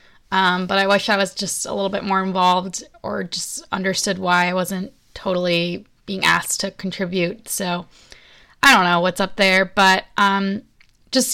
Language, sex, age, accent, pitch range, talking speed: English, female, 20-39, American, 185-210 Hz, 175 wpm